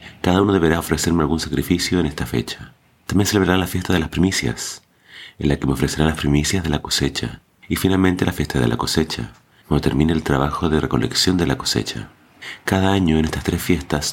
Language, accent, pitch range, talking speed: Spanish, Argentinian, 70-85 Hz, 205 wpm